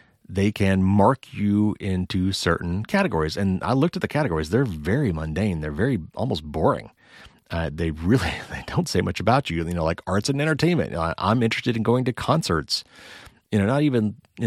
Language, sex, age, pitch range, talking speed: English, male, 30-49, 85-110 Hz, 185 wpm